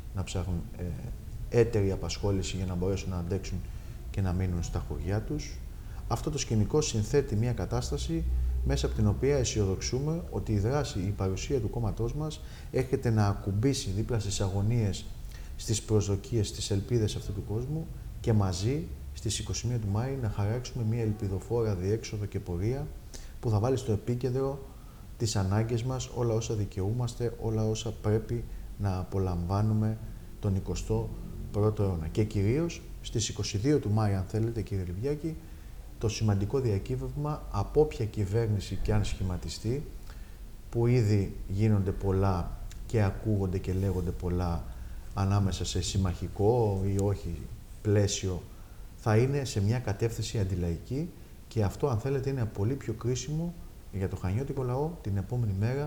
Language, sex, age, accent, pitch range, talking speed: Greek, male, 30-49, native, 95-115 Hz, 145 wpm